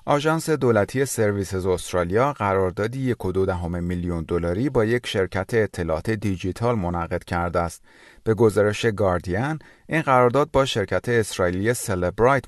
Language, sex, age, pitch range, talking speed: Persian, male, 30-49, 90-125 Hz, 135 wpm